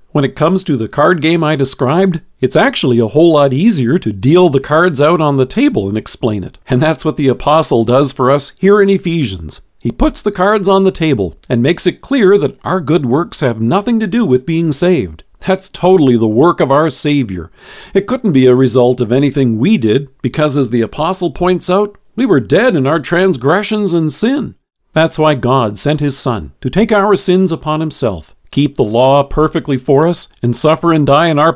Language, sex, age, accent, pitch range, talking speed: English, male, 50-69, American, 130-185 Hz, 215 wpm